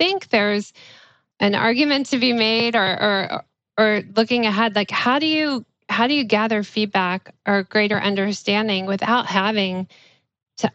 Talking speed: 155 wpm